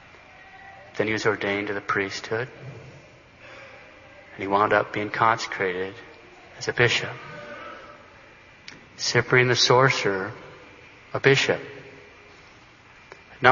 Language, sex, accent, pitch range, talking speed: English, male, American, 110-155 Hz, 100 wpm